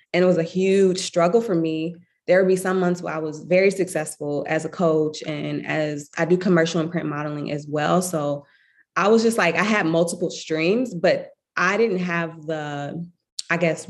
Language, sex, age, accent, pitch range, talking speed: English, female, 20-39, American, 155-180 Hz, 205 wpm